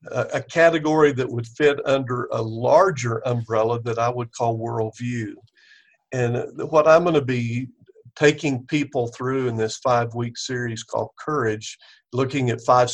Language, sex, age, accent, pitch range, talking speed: English, male, 50-69, American, 120-145 Hz, 150 wpm